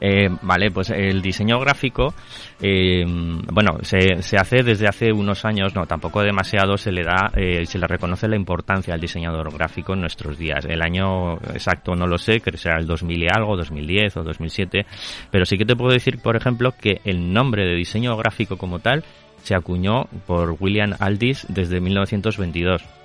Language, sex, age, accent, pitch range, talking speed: Spanish, male, 30-49, Spanish, 90-110 Hz, 185 wpm